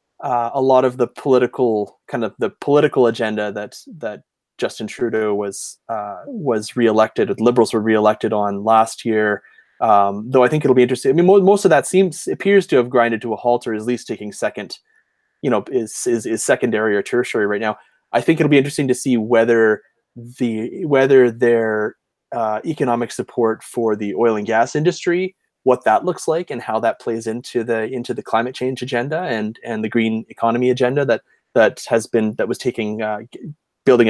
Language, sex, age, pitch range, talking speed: English, male, 20-39, 110-145 Hz, 195 wpm